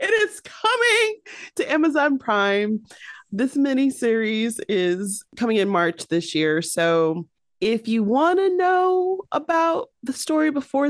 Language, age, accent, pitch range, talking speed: English, 30-49, American, 180-275 Hz, 130 wpm